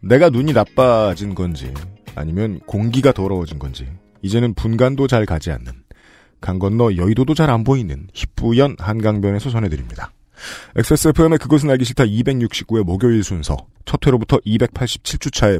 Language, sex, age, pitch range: Korean, male, 40-59, 95-150 Hz